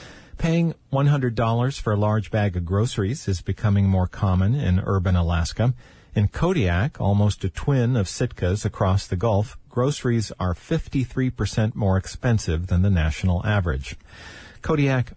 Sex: male